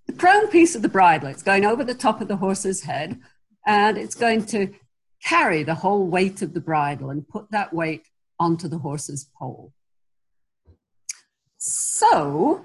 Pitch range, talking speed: 155-210 Hz, 165 wpm